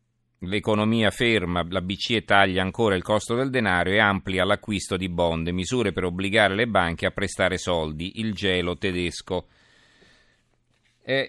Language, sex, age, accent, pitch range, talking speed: Italian, male, 40-59, native, 90-110 Hz, 145 wpm